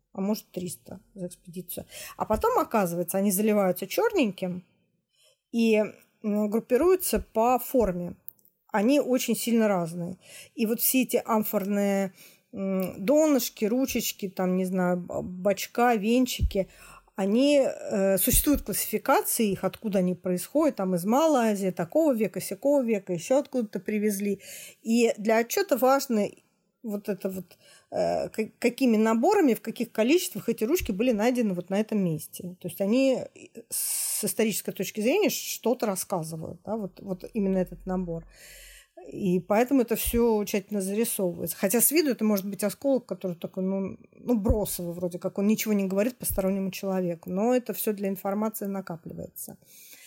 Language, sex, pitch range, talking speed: Russian, female, 190-240 Hz, 140 wpm